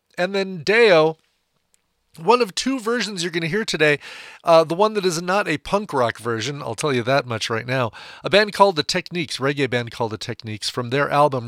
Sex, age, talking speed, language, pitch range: male, 40-59, 220 wpm, English, 120-170 Hz